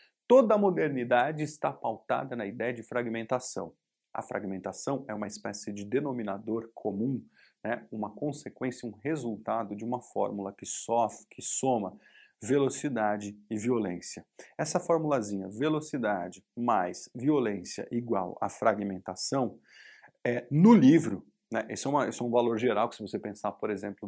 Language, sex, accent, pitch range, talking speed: Portuguese, male, Brazilian, 105-135 Hz, 145 wpm